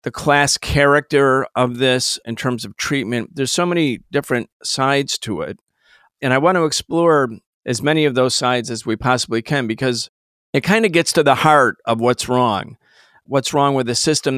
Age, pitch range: 50-69, 120-150 Hz